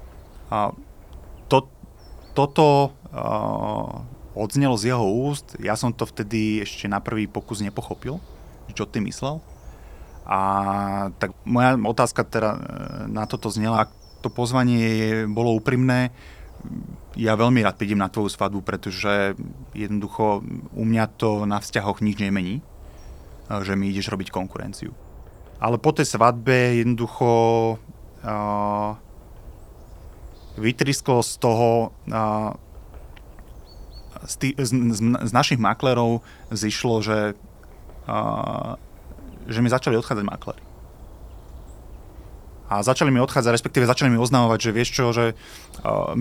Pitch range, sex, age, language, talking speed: 95-120 Hz, male, 30-49, Slovak, 125 wpm